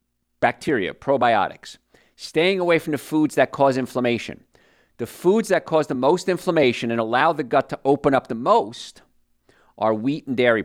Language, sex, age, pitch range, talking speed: English, male, 50-69, 110-155 Hz, 170 wpm